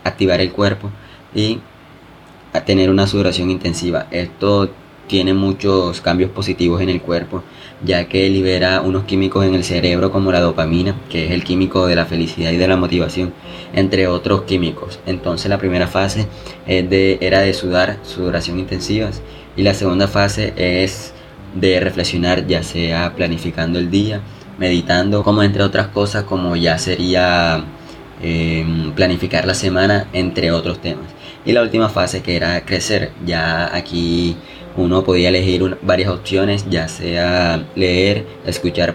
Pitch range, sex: 85-95 Hz, male